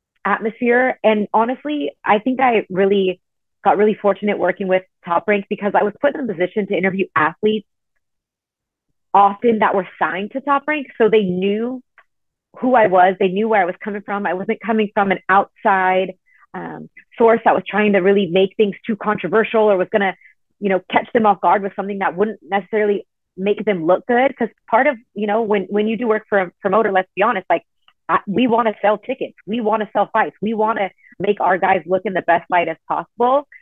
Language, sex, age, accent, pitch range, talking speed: English, female, 30-49, American, 185-215 Hz, 210 wpm